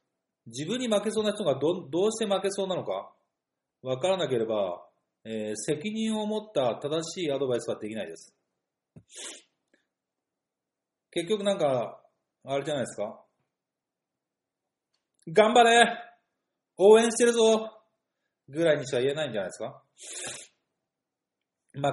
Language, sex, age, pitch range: Japanese, male, 40-59, 135-220 Hz